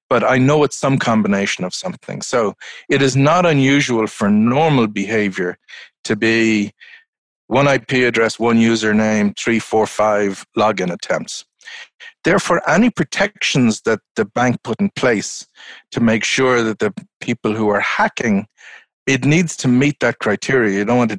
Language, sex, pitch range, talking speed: English, male, 110-135 Hz, 160 wpm